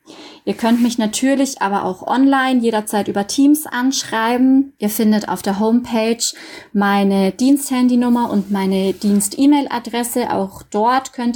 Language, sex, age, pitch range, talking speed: German, female, 20-39, 210-250 Hz, 125 wpm